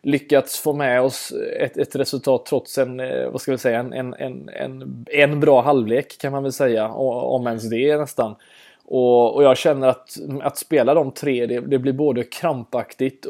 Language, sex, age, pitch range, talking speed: Swedish, male, 20-39, 120-145 Hz, 185 wpm